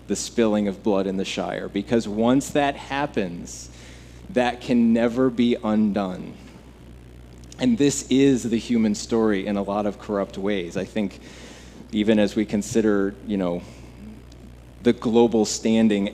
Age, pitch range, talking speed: 30-49, 95-120 Hz, 145 wpm